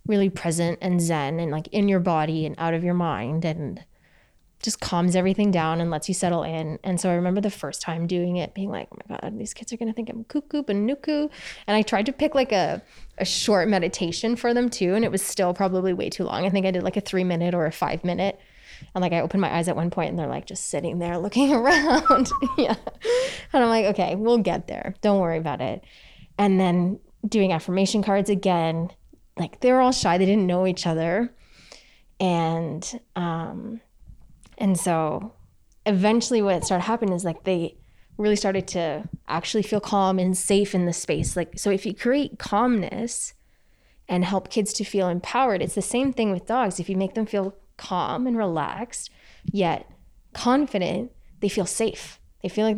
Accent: American